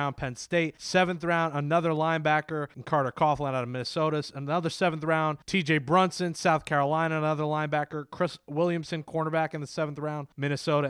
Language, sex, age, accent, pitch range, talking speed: English, male, 20-39, American, 140-175 Hz, 160 wpm